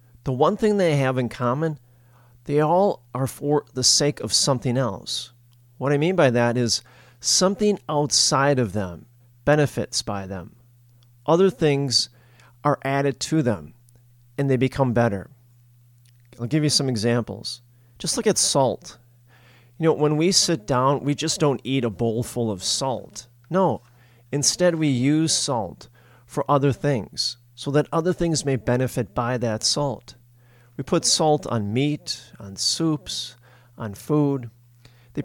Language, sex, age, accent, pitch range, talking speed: English, male, 40-59, American, 120-145 Hz, 155 wpm